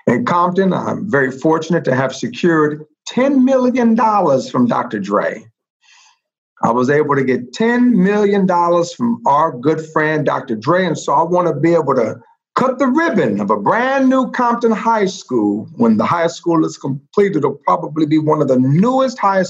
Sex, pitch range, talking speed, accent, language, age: male, 155-230 Hz, 180 wpm, American, English, 50-69